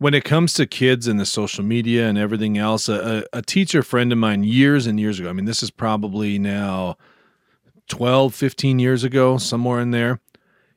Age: 30-49